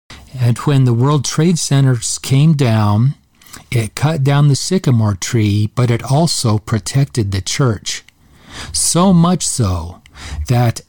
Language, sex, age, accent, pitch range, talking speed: English, male, 40-59, American, 110-145 Hz, 130 wpm